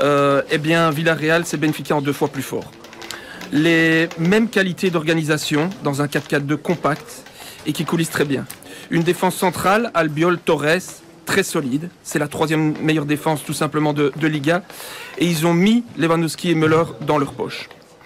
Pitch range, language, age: 160-195 Hz, French, 40-59